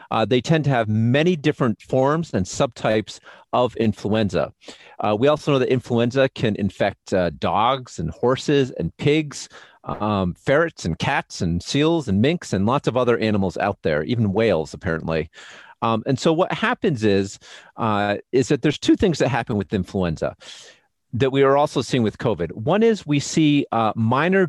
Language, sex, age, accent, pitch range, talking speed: English, male, 40-59, American, 105-140 Hz, 180 wpm